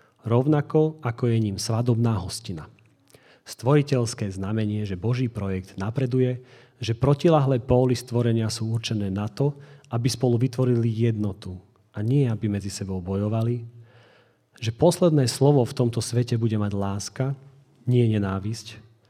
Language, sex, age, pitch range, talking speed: Slovak, male, 40-59, 105-135 Hz, 130 wpm